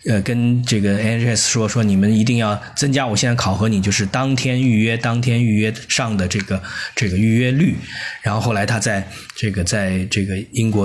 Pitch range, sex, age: 100-125 Hz, male, 20-39